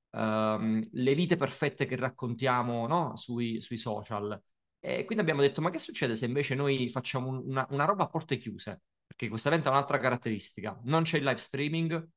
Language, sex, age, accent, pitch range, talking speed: Italian, male, 30-49, native, 125-160 Hz, 185 wpm